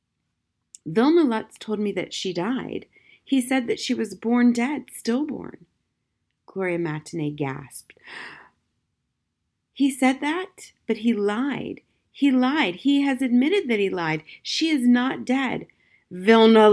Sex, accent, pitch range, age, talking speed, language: female, American, 200-275 Hz, 40-59, 135 wpm, English